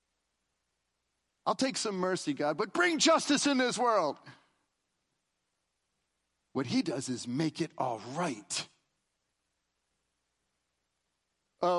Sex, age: male, 40-59